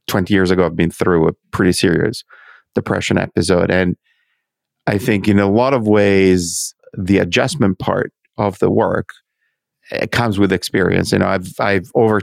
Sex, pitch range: male, 95-110 Hz